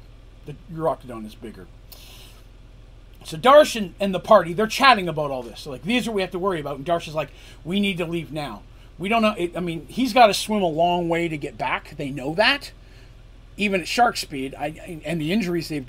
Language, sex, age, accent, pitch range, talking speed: English, male, 40-59, American, 120-180 Hz, 240 wpm